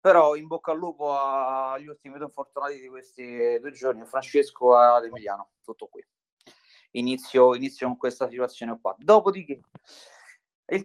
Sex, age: male, 30-49